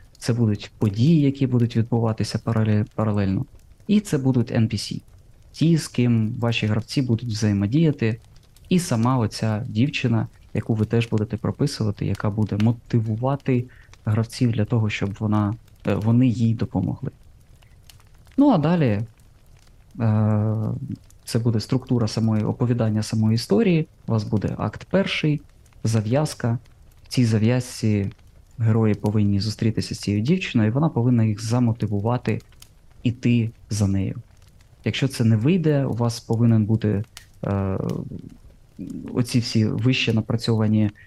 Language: Ukrainian